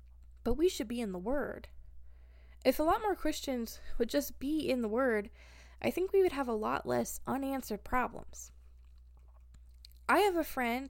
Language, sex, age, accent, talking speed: English, female, 20-39, American, 175 wpm